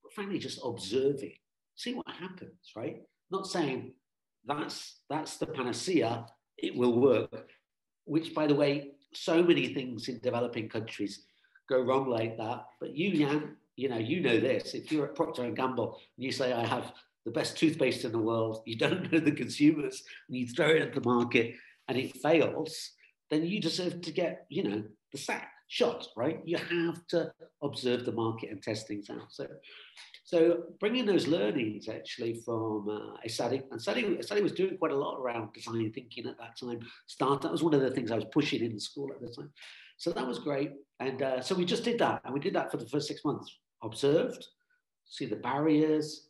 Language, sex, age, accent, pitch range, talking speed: English, male, 50-69, British, 115-165 Hz, 200 wpm